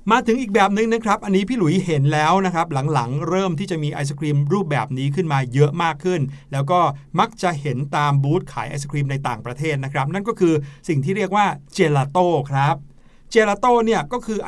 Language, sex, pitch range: Thai, male, 140-180 Hz